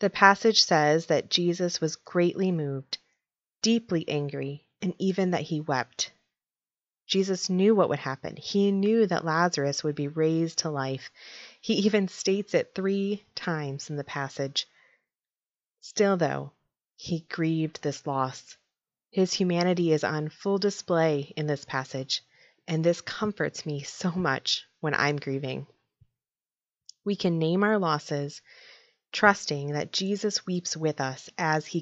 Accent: American